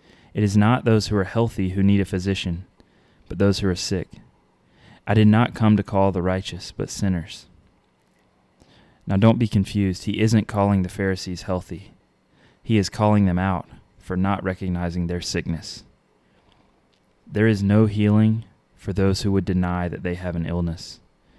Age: 20-39